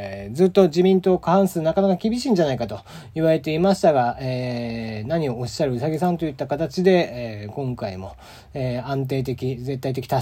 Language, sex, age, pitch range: Japanese, male, 40-59, 125-195 Hz